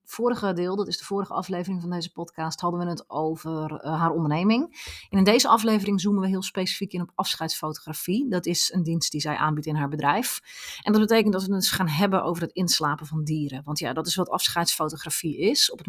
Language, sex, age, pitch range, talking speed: Dutch, female, 30-49, 155-195 Hz, 230 wpm